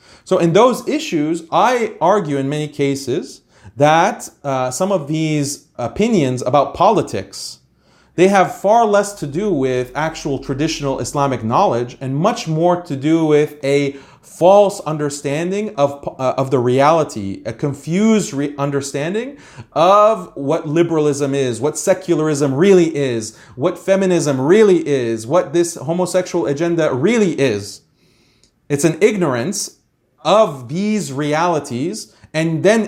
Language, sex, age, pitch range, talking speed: English, male, 30-49, 140-185 Hz, 130 wpm